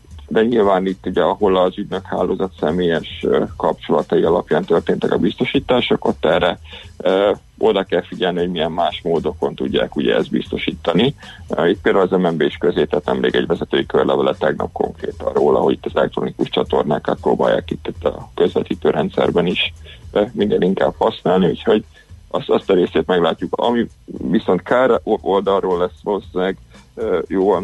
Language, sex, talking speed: Hungarian, male, 145 wpm